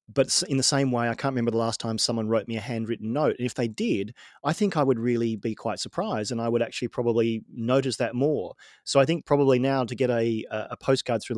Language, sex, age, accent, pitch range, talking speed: English, male, 40-59, Australian, 115-135 Hz, 255 wpm